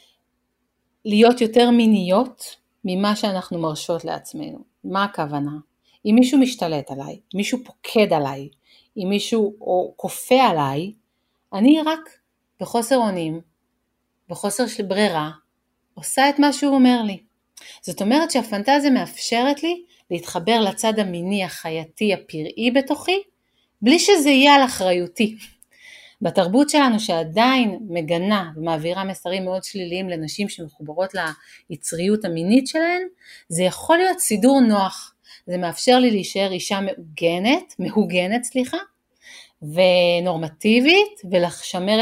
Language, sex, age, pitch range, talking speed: Hebrew, female, 30-49, 170-245 Hz, 110 wpm